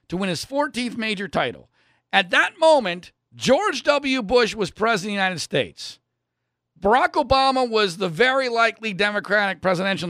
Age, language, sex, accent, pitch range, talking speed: 50-69, English, male, American, 195-280 Hz, 155 wpm